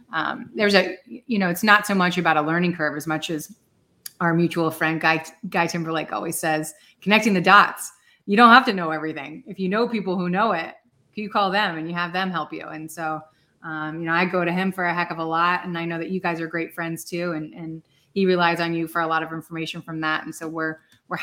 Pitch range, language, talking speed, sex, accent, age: 165-200 Hz, English, 260 wpm, female, American, 30-49